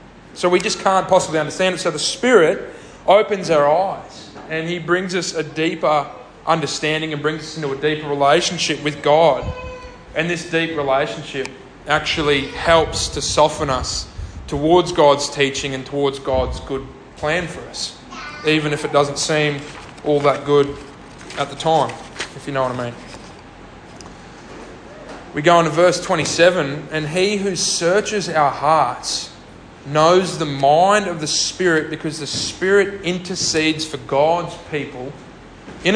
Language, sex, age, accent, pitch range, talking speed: English, male, 20-39, Australian, 140-170 Hz, 150 wpm